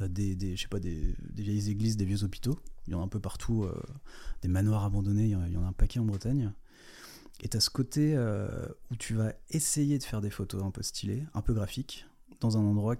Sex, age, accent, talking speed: male, 30-49, French, 245 wpm